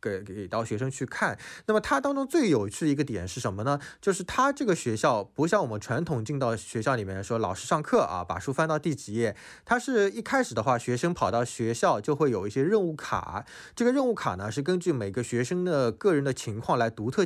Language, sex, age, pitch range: Chinese, male, 20-39, 110-165 Hz